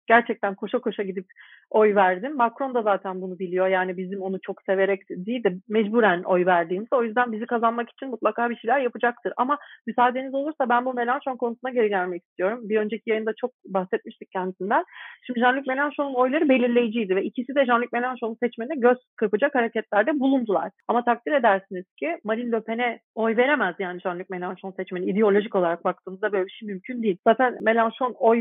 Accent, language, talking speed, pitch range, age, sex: native, Turkish, 180 wpm, 200-255 Hz, 40-59, female